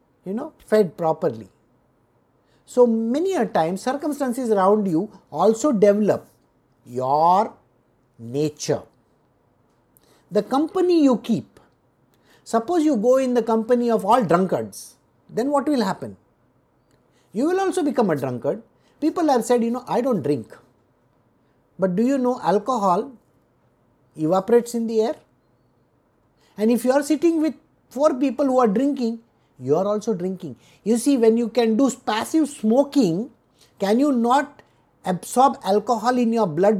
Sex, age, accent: male, 50-69, Indian